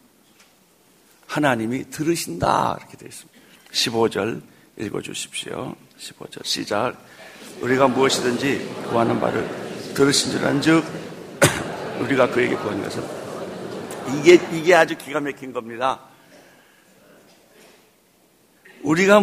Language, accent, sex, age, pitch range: Korean, native, male, 60-79, 130-160 Hz